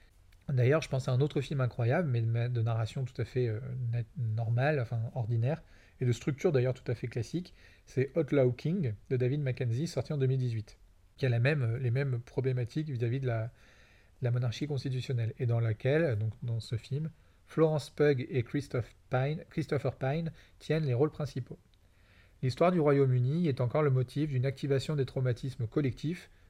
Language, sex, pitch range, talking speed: French, male, 120-145 Hz, 180 wpm